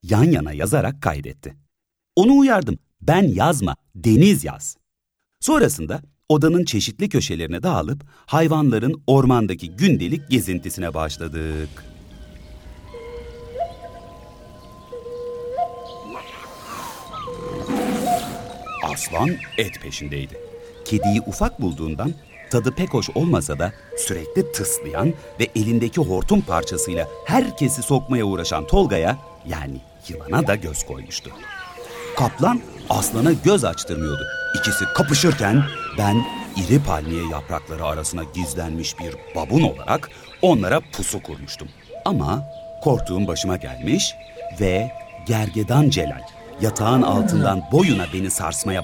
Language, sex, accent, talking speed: Turkish, male, native, 95 wpm